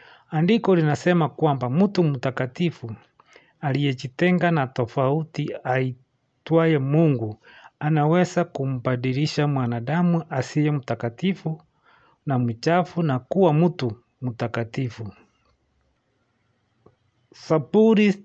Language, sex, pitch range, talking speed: English, male, 125-160 Hz, 70 wpm